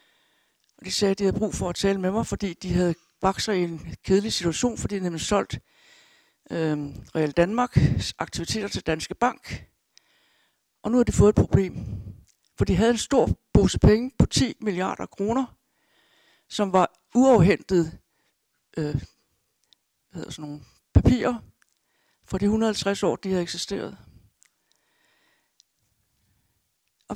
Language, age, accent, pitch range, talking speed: Danish, 60-79, native, 175-230 Hz, 135 wpm